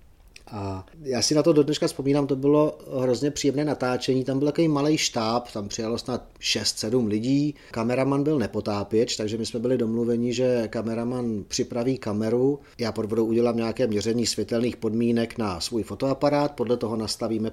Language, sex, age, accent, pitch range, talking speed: Czech, male, 40-59, native, 105-125 Hz, 165 wpm